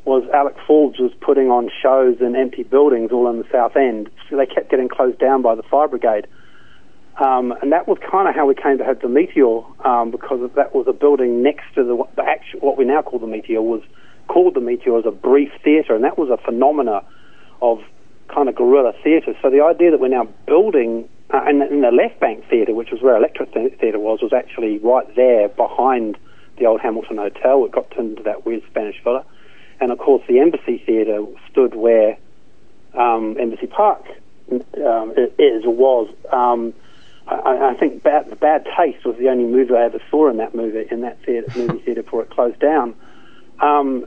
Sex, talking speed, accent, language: male, 205 wpm, Australian, English